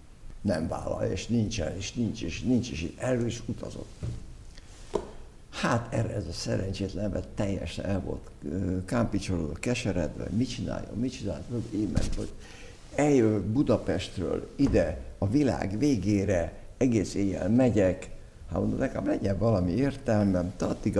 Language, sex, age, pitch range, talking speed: Hungarian, male, 60-79, 95-115 Hz, 130 wpm